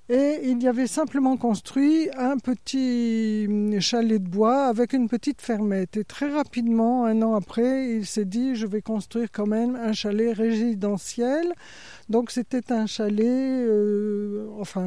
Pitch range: 210-245 Hz